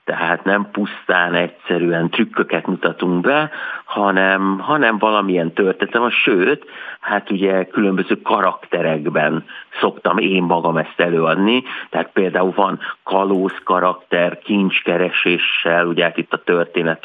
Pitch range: 85-100 Hz